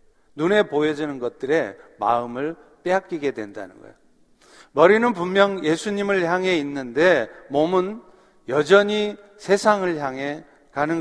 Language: Korean